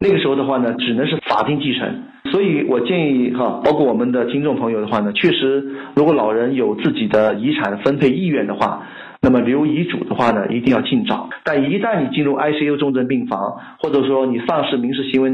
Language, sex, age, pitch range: Chinese, male, 50-69, 115-145 Hz